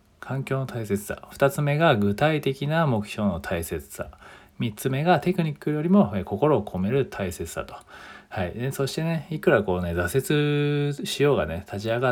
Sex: male